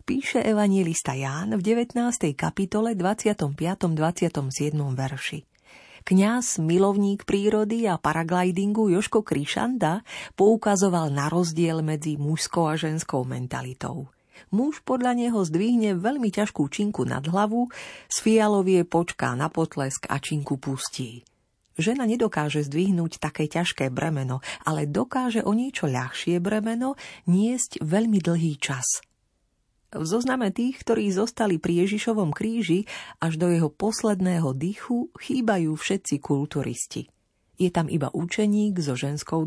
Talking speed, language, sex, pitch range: 120 wpm, Slovak, female, 150-210 Hz